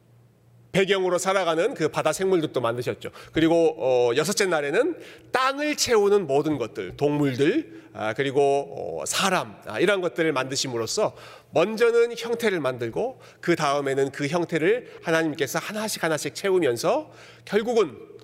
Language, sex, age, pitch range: Korean, male, 40-59, 140-220 Hz